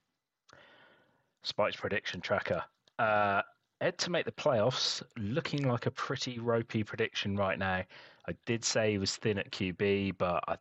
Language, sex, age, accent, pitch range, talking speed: English, male, 30-49, British, 95-115 Hz, 155 wpm